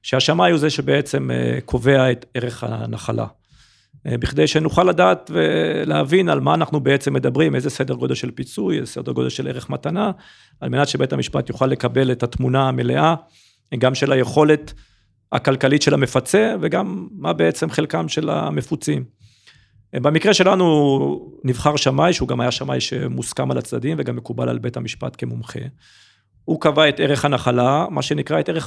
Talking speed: 155 wpm